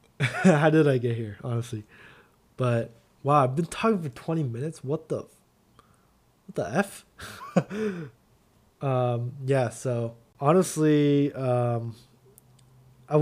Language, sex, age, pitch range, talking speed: English, male, 20-39, 120-145 Hz, 115 wpm